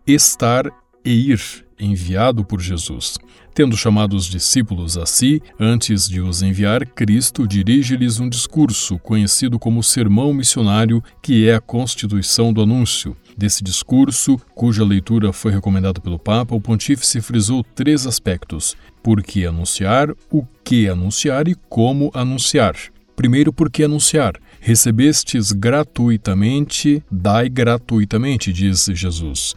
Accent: Brazilian